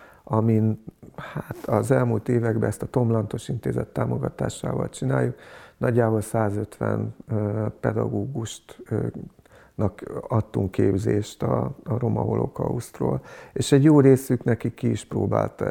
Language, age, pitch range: Hungarian, 50-69, 105-120 Hz